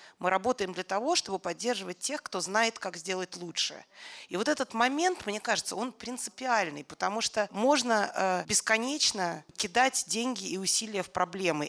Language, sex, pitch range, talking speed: Russian, female, 190-255 Hz, 155 wpm